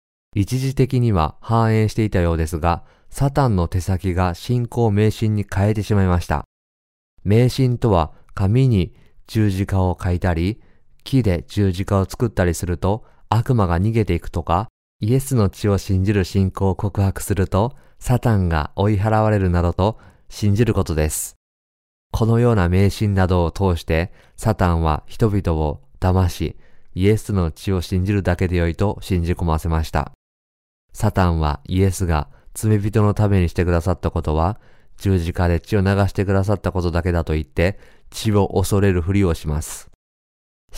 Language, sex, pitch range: Japanese, male, 85-105 Hz